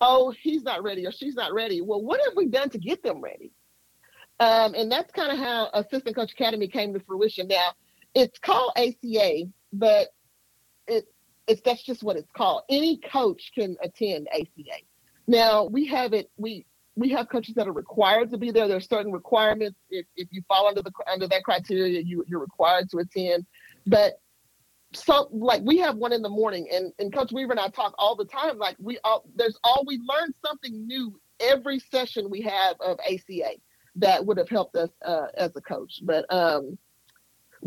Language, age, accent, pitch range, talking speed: English, 40-59, American, 185-255 Hz, 195 wpm